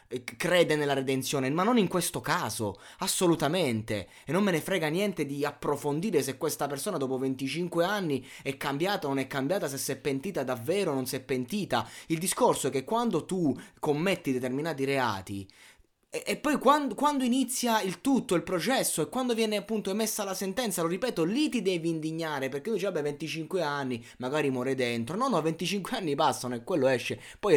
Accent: native